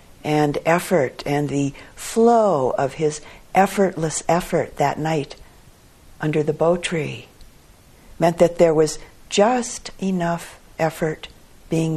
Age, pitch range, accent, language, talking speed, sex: 50-69, 150-185 Hz, American, English, 115 wpm, female